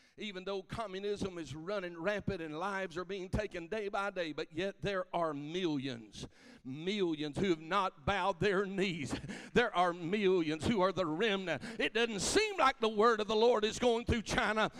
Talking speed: 185 wpm